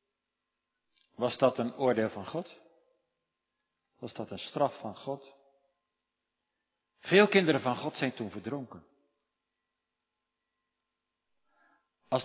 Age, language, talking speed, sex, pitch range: 50-69, Dutch, 100 wpm, male, 115-170 Hz